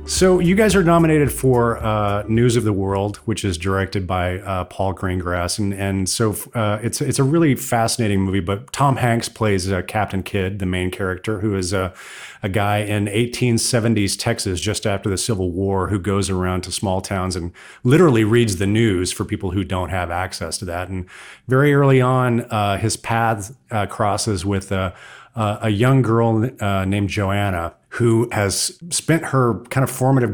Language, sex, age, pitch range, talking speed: English, male, 40-59, 95-120 Hz, 190 wpm